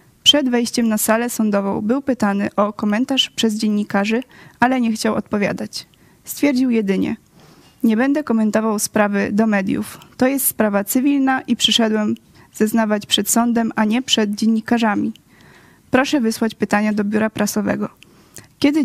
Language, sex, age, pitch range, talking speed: Polish, female, 20-39, 210-240 Hz, 135 wpm